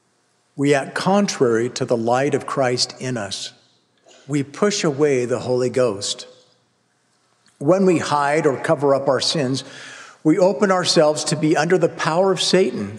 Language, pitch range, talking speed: English, 135-180 Hz, 155 wpm